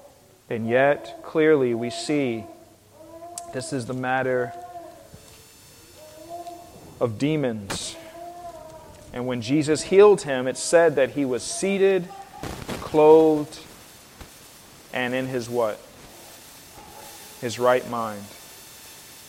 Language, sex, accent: English, male, American